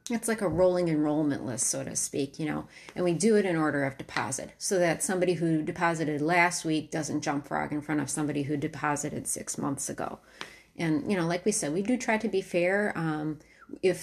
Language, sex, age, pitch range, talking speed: English, female, 30-49, 155-180 Hz, 225 wpm